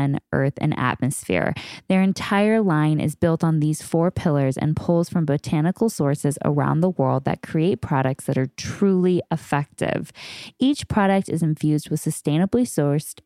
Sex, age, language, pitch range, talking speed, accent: female, 10-29, English, 145-185 Hz, 155 wpm, American